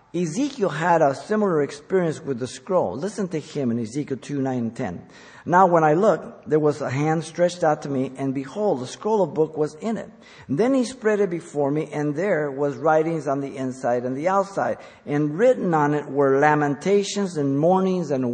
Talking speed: 210 wpm